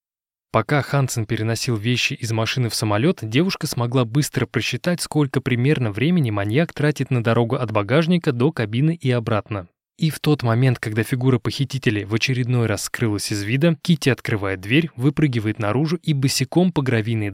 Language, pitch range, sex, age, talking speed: Russian, 110-150 Hz, male, 20-39, 165 wpm